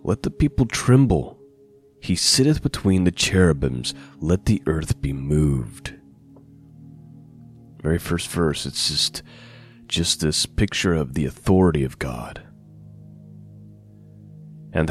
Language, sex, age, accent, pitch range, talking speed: English, male, 30-49, American, 80-125 Hz, 115 wpm